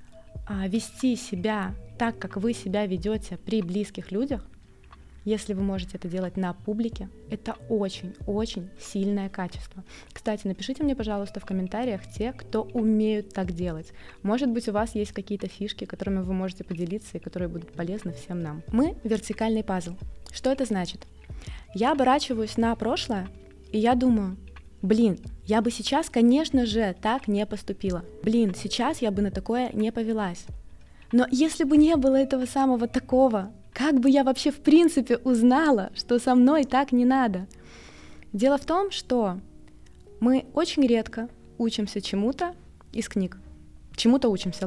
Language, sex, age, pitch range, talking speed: Russian, female, 20-39, 190-245 Hz, 155 wpm